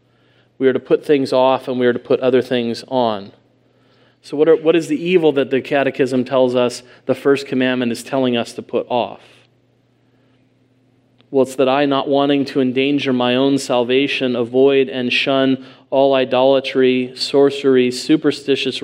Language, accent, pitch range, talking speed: English, American, 125-145 Hz, 165 wpm